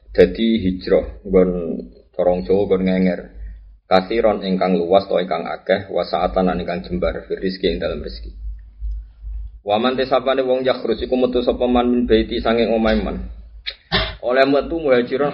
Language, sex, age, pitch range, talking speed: Indonesian, male, 20-39, 95-120 Hz, 155 wpm